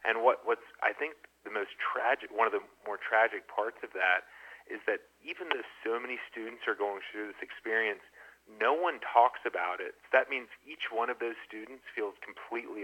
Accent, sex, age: American, male, 40-59